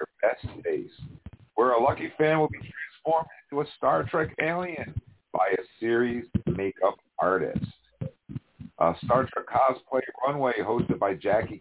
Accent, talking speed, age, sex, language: American, 140 wpm, 50-69, male, English